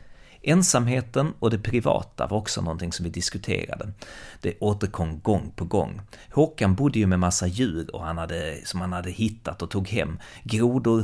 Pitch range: 90-115 Hz